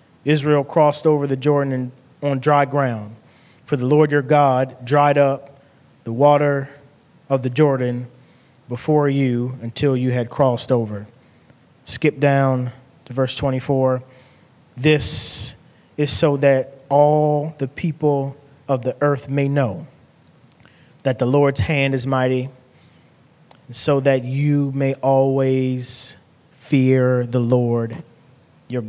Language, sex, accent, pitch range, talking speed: English, male, American, 130-150 Hz, 125 wpm